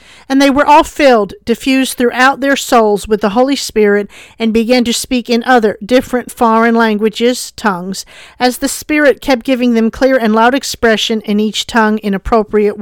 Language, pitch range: English, 215-265 Hz